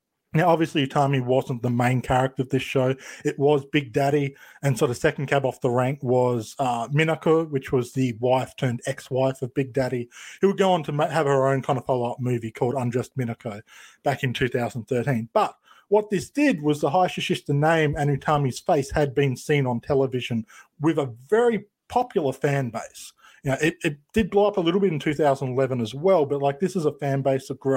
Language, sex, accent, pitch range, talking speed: English, male, Australian, 130-160 Hz, 205 wpm